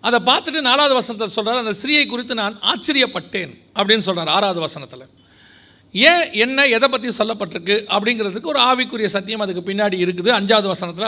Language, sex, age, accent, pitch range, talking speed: Tamil, male, 40-59, native, 200-265 Hz, 150 wpm